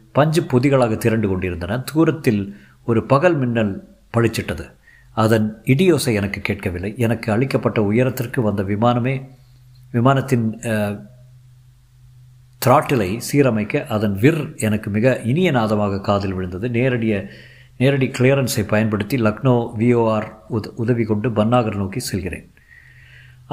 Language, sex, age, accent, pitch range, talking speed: Tamil, male, 50-69, native, 105-130 Hz, 100 wpm